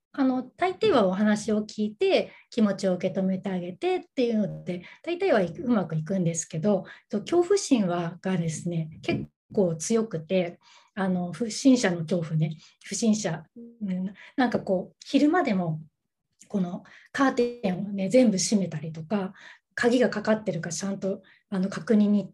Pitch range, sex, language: 180-250 Hz, female, Japanese